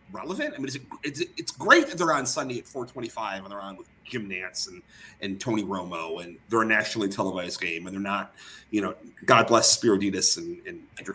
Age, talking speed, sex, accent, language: 30-49, 215 wpm, male, American, English